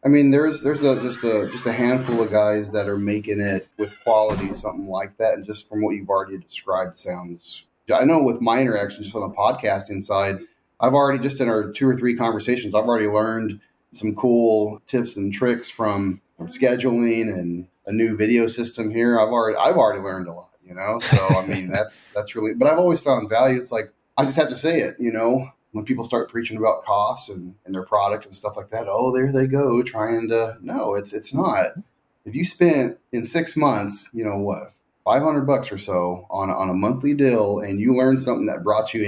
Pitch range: 105-130 Hz